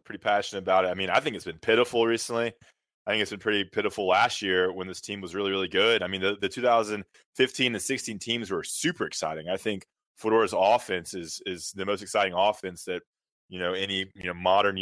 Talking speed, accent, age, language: 225 wpm, American, 20-39, English